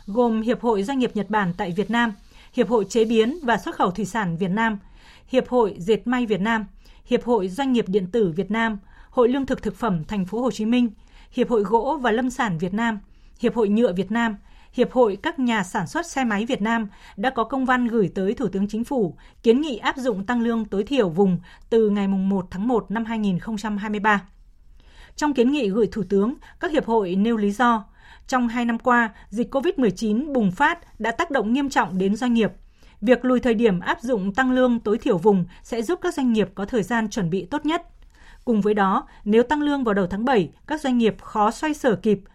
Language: Vietnamese